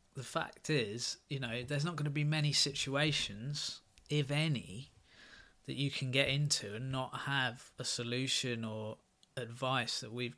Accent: British